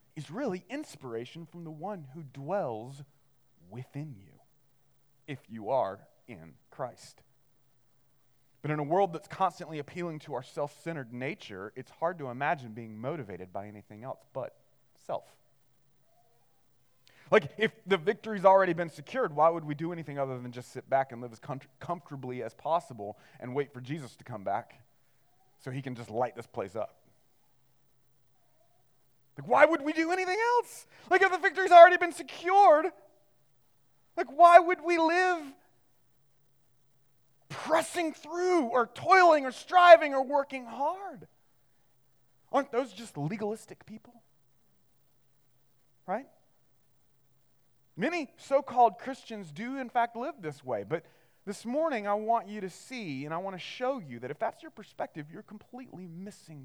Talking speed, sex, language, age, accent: 150 wpm, male, English, 30-49, American